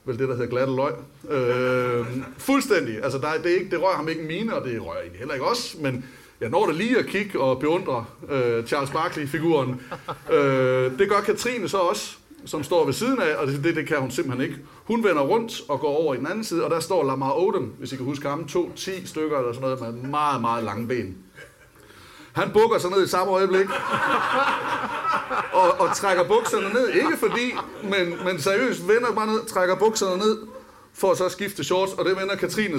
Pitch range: 135-195 Hz